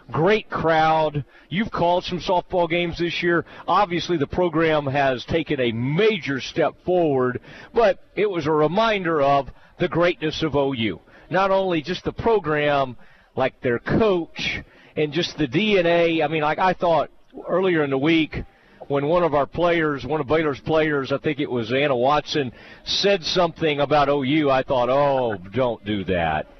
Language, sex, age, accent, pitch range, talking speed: English, male, 40-59, American, 135-175 Hz, 165 wpm